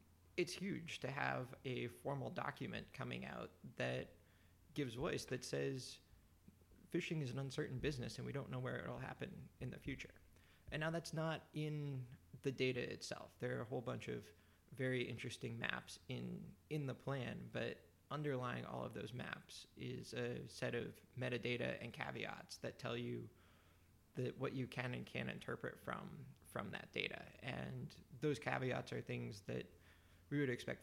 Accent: American